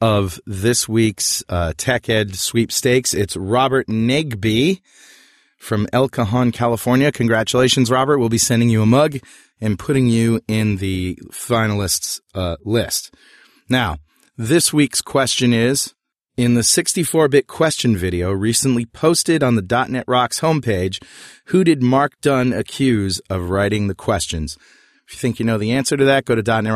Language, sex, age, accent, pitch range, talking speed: English, male, 30-49, American, 105-130 Hz, 150 wpm